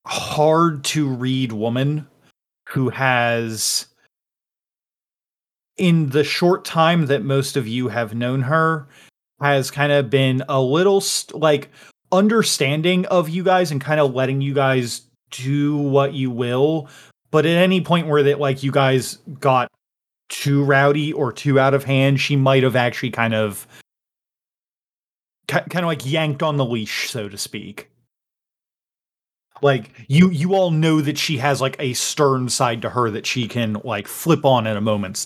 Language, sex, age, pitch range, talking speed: English, male, 30-49, 120-150 Hz, 160 wpm